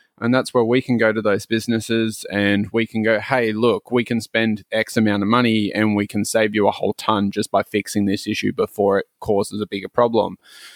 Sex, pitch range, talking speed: male, 105-115 Hz, 230 wpm